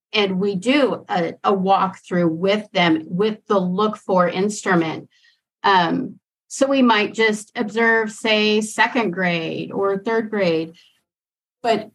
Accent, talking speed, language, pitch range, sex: American, 130 wpm, English, 180-215 Hz, female